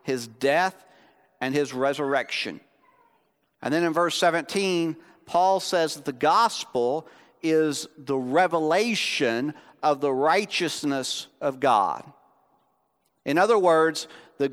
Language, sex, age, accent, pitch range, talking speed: English, male, 50-69, American, 155-205 Hz, 110 wpm